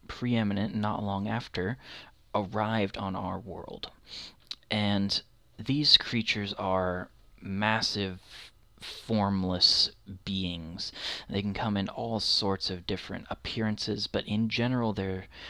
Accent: American